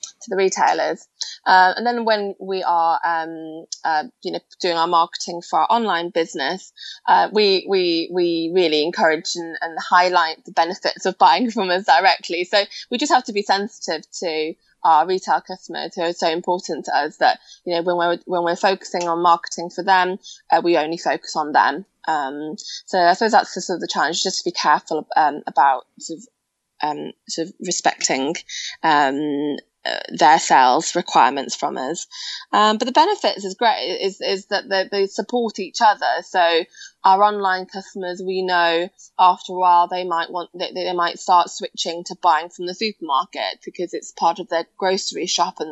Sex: female